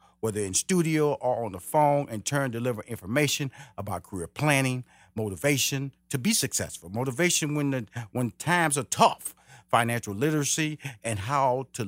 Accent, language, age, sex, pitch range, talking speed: American, English, 40-59, male, 100-145 Hz, 150 wpm